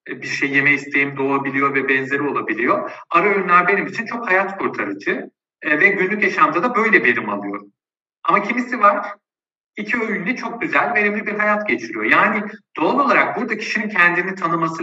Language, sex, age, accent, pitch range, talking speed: Turkish, male, 50-69, native, 160-220 Hz, 165 wpm